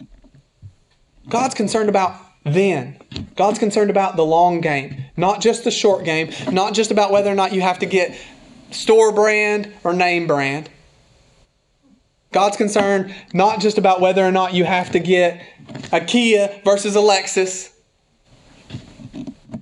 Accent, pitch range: American, 170-205 Hz